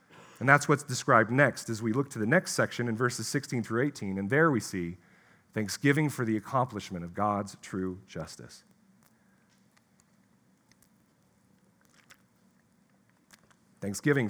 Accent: American